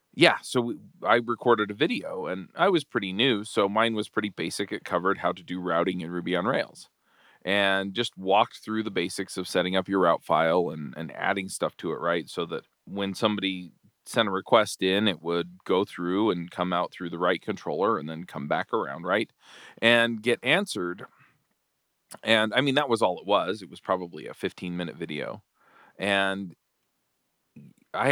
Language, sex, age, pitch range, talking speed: English, male, 40-59, 95-110 Hz, 195 wpm